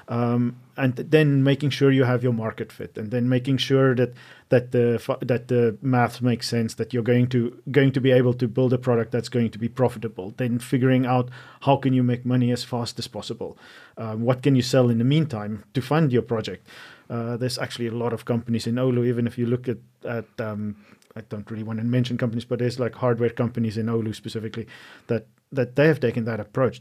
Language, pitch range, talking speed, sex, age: Finnish, 115-130 Hz, 225 wpm, male, 40-59